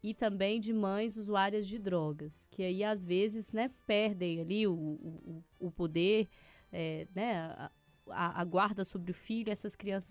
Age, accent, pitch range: 20-39, Brazilian, 180-225 Hz